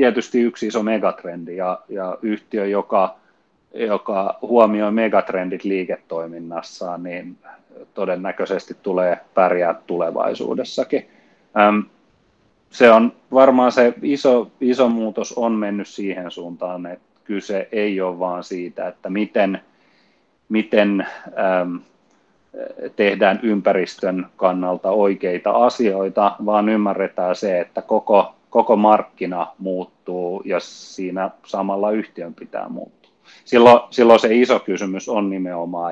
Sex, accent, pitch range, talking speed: male, native, 90-110 Hz, 105 wpm